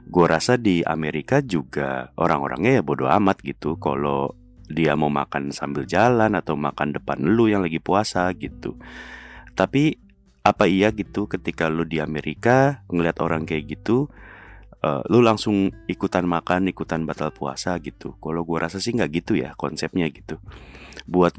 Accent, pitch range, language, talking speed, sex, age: native, 80-100 Hz, Indonesian, 155 wpm, male, 30-49